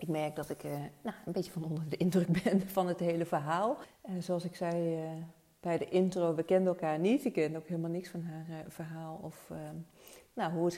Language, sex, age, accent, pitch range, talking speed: Dutch, female, 40-59, Dutch, 160-180 Hz, 215 wpm